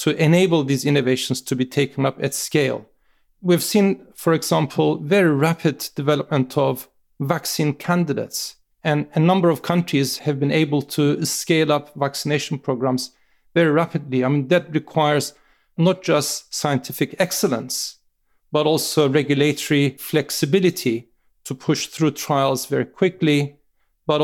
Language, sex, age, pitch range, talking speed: English, male, 40-59, 140-165 Hz, 135 wpm